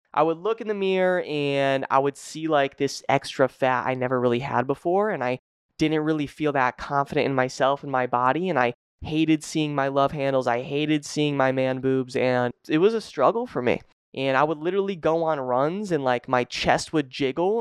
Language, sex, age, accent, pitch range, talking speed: English, male, 20-39, American, 135-165 Hz, 220 wpm